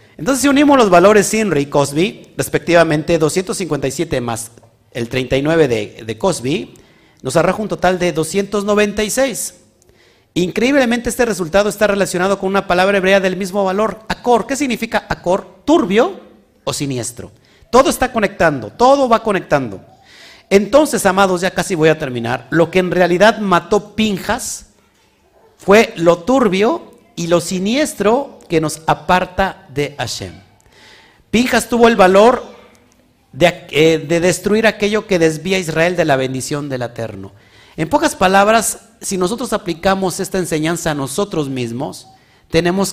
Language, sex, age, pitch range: Spanish, male, 50-69, 140-210 Hz